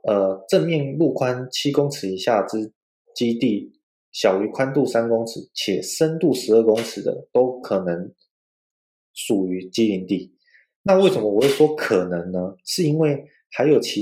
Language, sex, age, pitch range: Chinese, male, 20-39, 100-145 Hz